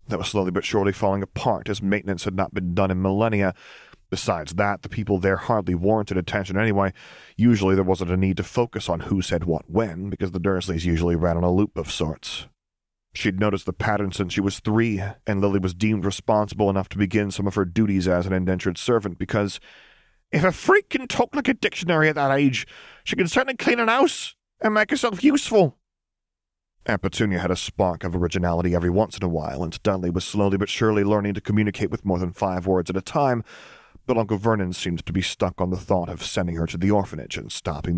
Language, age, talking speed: English, 30-49, 220 wpm